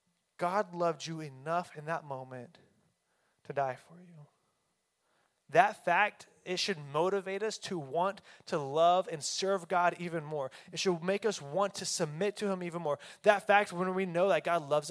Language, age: English, 20-39